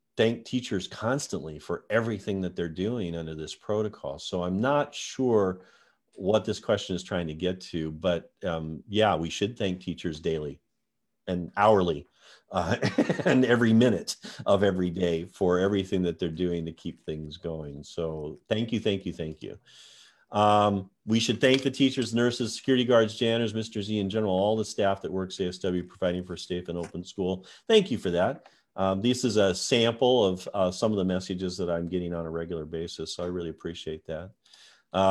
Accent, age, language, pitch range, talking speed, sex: American, 40-59, English, 90-110 Hz, 190 wpm, male